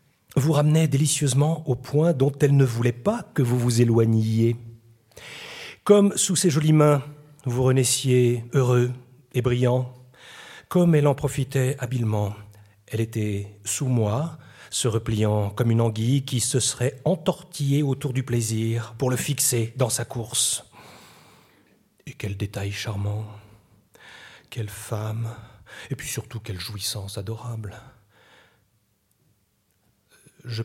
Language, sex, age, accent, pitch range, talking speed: French, male, 40-59, French, 110-140 Hz, 125 wpm